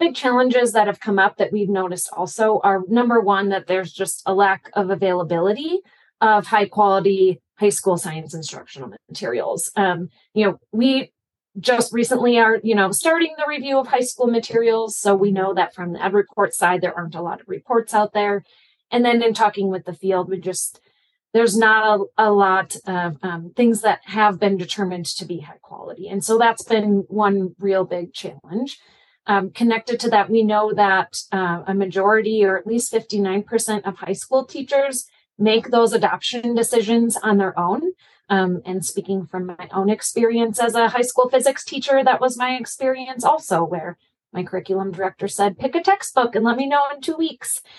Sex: female